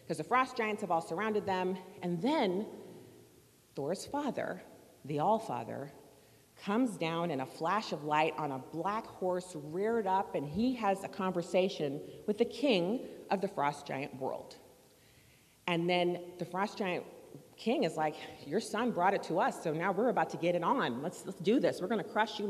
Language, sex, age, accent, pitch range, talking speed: English, female, 40-59, American, 165-230 Hz, 185 wpm